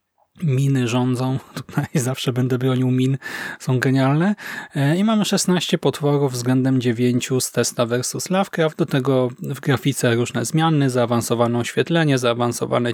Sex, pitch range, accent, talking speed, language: male, 130-165 Hz, native, 130 wpm, Polish